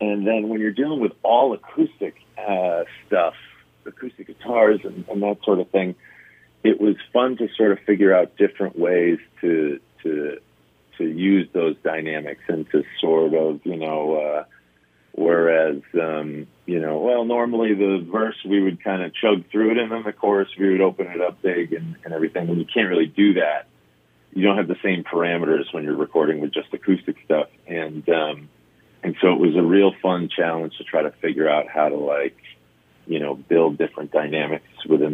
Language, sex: English, male